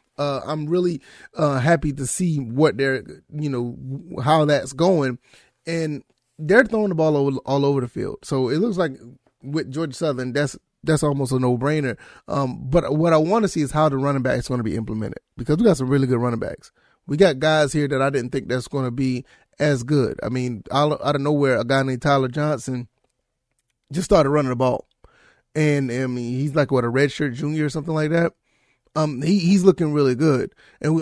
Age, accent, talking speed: 30-49, American, 210 wpm